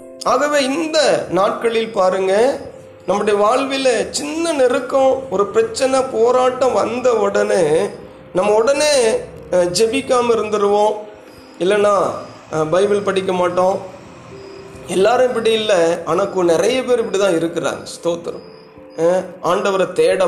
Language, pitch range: Tamil, 180-260 Hz